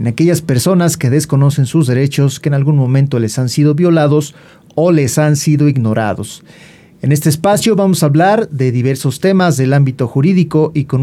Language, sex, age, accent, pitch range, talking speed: Spanish, male, 40-59, Mexican, 125-155 Hz, 185 wpm